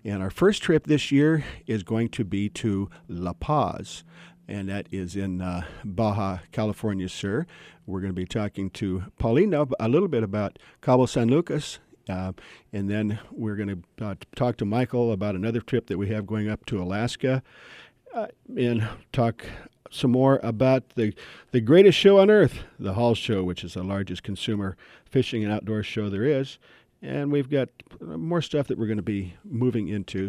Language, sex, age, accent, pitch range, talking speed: English, male, 50-69, American, 100-125 Hz, 185 wpm